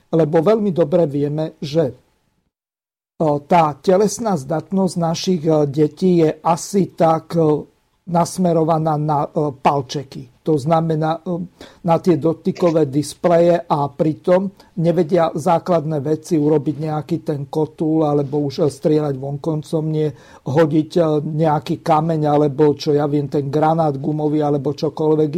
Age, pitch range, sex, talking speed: 50-69, 150-170 Hz, male, 110 wpm